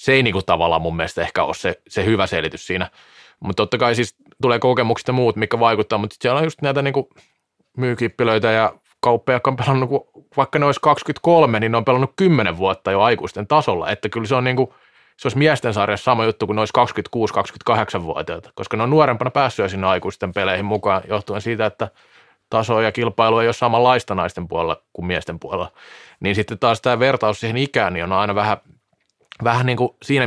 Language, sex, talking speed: Finnish, male, 190 wpm